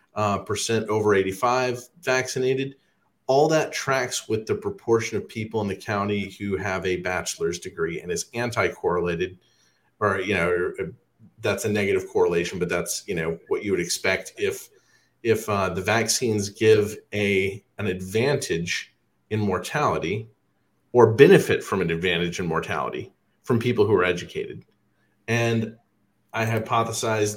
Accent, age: American, 40-59